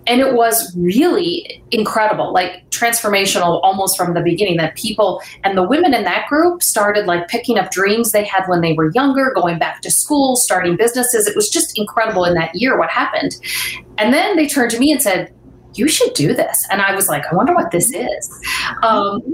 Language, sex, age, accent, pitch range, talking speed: English, female, 30-49, American, 180-250 Hz, 210 wpm